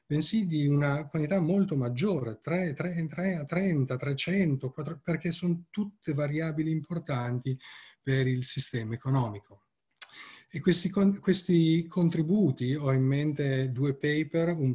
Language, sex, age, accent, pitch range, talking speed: Italian, male, 40-59, native, 130-160 Hz, 125 wpm